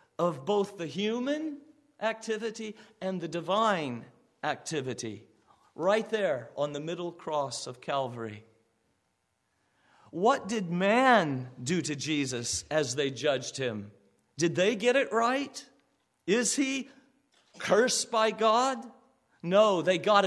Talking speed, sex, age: 120 wpm, male, 50-69